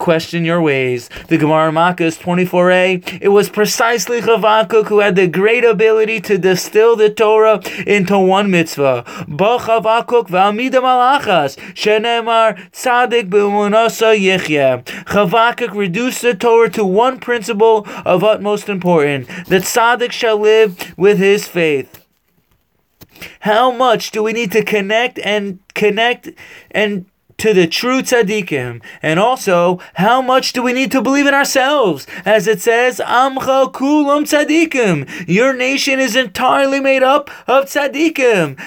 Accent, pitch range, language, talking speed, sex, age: American, 185-240 Hz, English, 125 wpm, male, 20-39